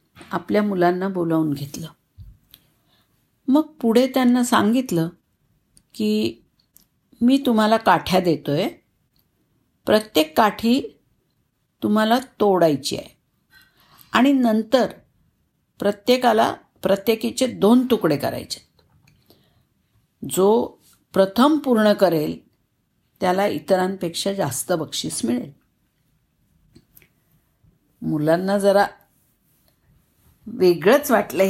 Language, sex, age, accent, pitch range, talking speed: Marathi, female, 50-69, native, 170-230 Hz, 70 wpm